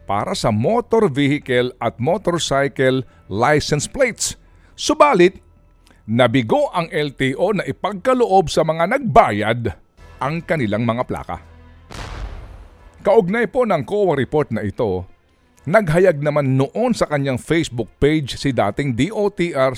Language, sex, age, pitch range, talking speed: Filipino, male, 50-69, 110-185 Hz, 115 wpm